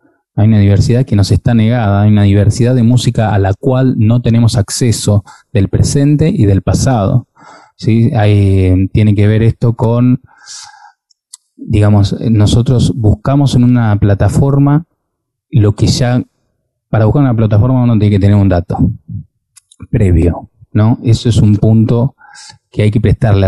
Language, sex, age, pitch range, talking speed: Spanish, male, 20-39, 100-120 Hz, 150 wpm